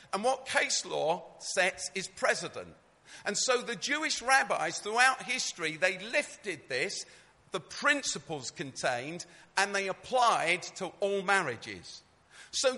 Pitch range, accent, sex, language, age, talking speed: 175-250 Hz, British, male, English, 50-69, 125 wpm